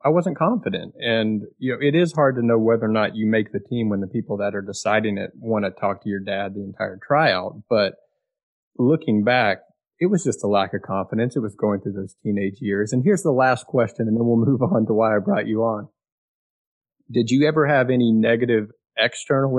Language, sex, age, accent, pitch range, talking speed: English, male, 30-49, American, 105-125 Hz, 225 wpm